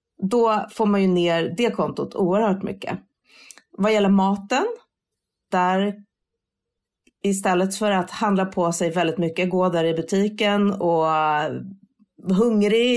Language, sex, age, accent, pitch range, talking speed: Swedish, female, 30-49, native, 180-215 Hz, 125 wpm